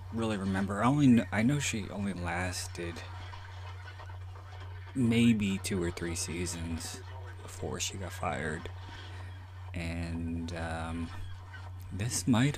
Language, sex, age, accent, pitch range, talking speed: English, male, 30-49, American, 90-95 Hz, 100 wpm